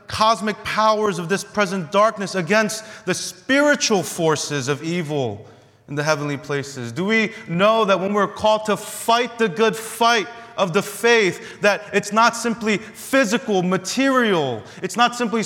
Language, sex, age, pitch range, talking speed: English, male, 30-49, 120-200 Hz, 155 wpm